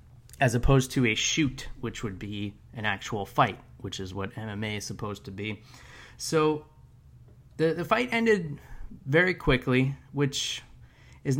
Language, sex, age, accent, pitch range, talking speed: English, male, 20-39, American, 110-130 Hz, 145 wpm